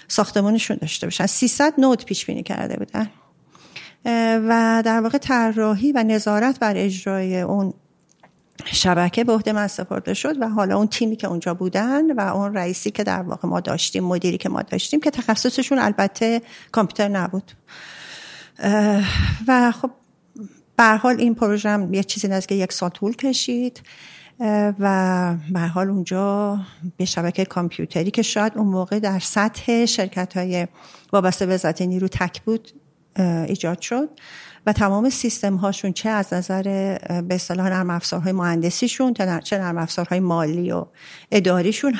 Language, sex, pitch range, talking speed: Persian, female, 185-230 Hz, 140 wpm